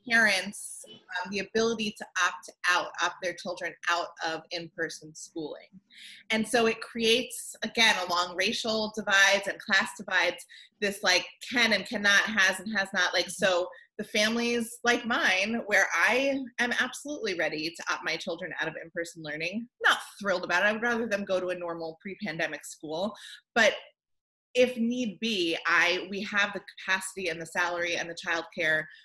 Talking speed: 170 wpm